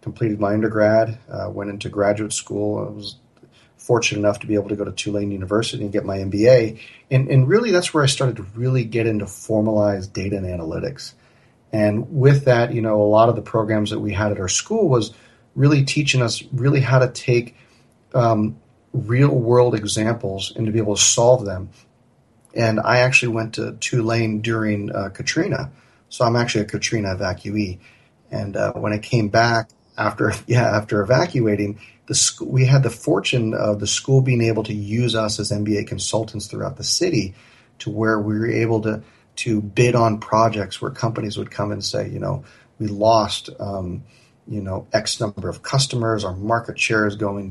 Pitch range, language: 105-120 Hz, English